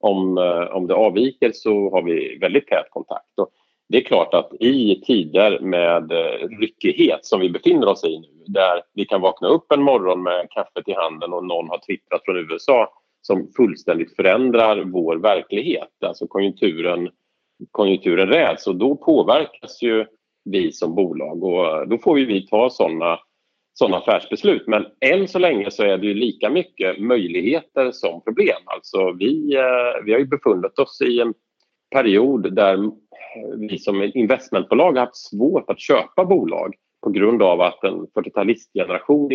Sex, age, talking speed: male, 40-59, 160 wpm